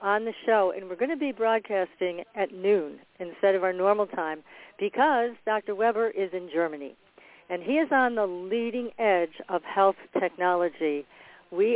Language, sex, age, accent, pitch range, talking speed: English, female, 50-69, American, 175-225 Hz, 170 wpm